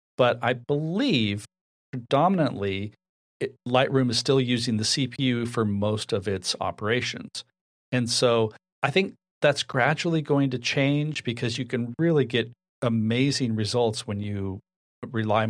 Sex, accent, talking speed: male, American, 130 wpm